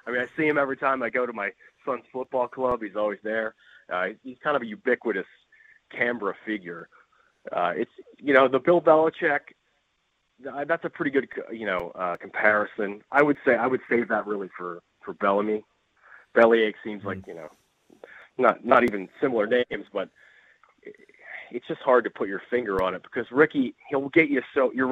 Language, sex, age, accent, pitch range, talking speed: English, male, 30-49, American, 110-155 Hz, 190 wpm